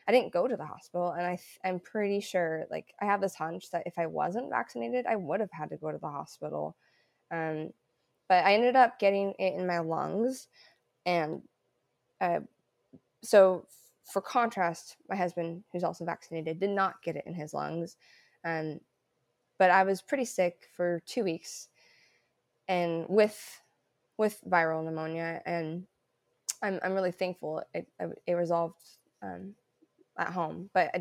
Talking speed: 170 wpm